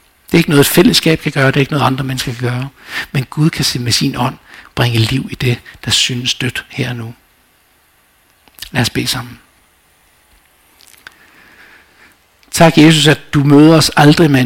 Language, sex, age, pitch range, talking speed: Danish, male, 60-79, 120-150 Hz, 180 wpm